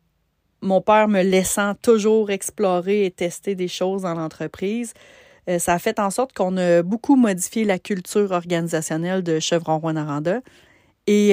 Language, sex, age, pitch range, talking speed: French, female, 30-49, 170-200 Hz, 155 wpm